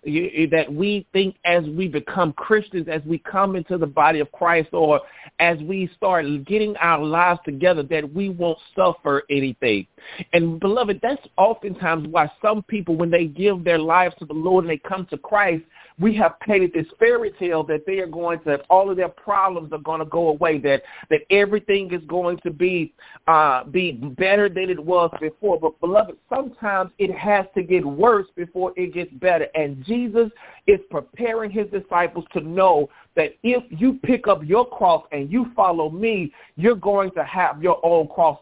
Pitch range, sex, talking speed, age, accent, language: 165-205 Hz, male, 185 wpm, 40-59, American, English